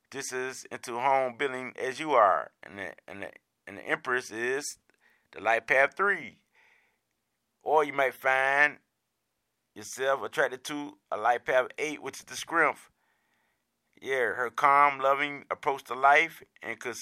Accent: American